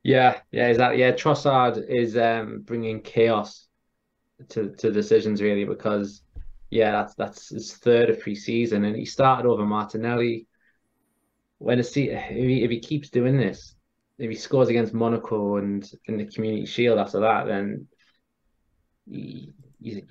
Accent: British